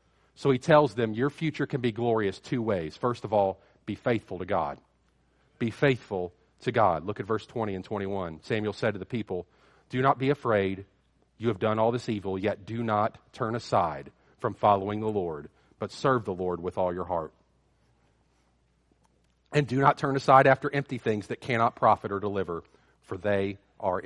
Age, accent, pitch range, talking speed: 40-59, American, 95-130 Hz, 190 wpm